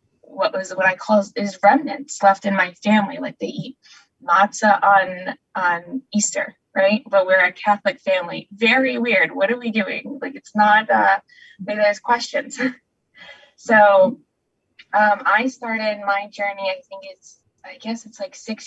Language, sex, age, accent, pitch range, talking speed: English, female, 10-29, American, 190-240 Hz, 165 wpm